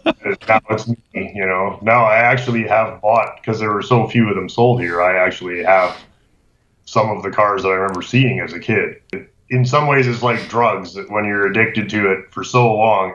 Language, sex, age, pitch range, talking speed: English, male, 30-49, 95-115 Hz, 220 wpm